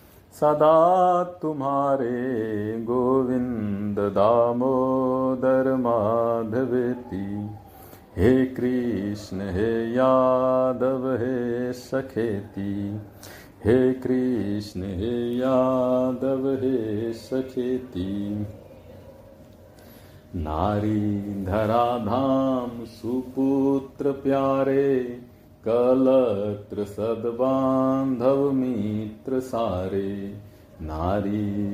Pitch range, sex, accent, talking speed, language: 105-135 Hz, male, native, 50 wpm, Hindi